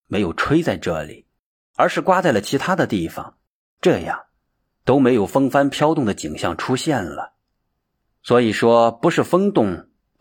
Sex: male